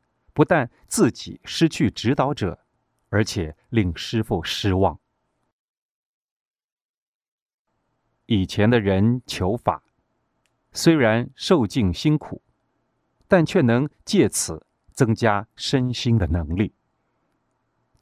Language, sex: Chinese, male